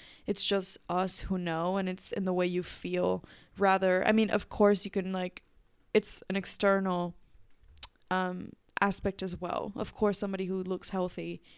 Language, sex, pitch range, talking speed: English, female, 180-220 Hz, 170 wpm